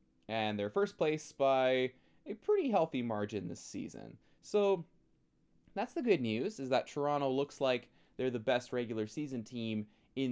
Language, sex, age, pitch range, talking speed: English, male, 20-39, 120-185 Hz, 165 wpm